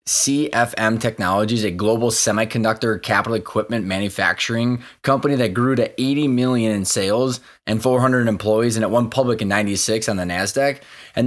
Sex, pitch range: male, 110-130 Hz